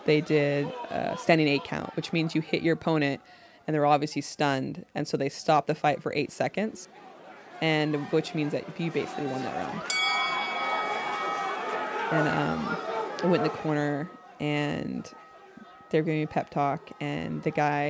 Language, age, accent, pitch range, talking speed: English, 20-39, American, 150-175 Hz, 175 wpm